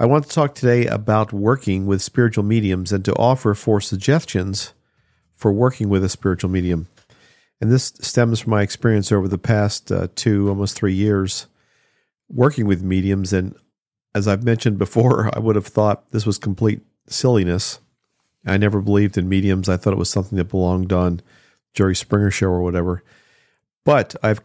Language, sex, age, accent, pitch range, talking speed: English, male, 50-69, American, 95-115 Hz, 175 wpm